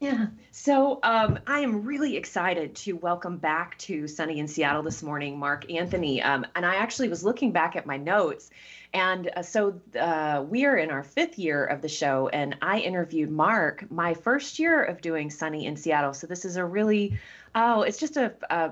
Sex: female